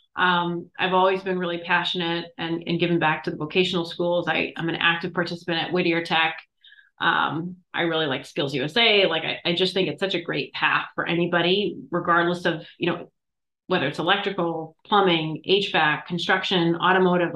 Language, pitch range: English, 165-185 Hz